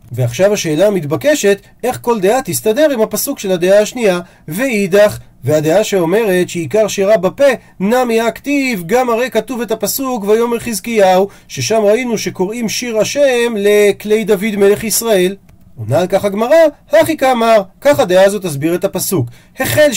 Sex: male